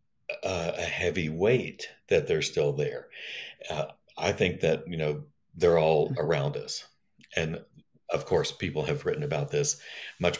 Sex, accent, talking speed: male, American, 150 wpm